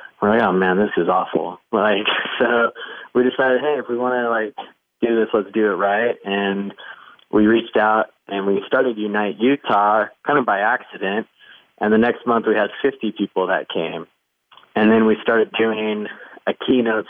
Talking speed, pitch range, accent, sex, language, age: 185 wpm, 100-115 Hz, American, male, English, 20-39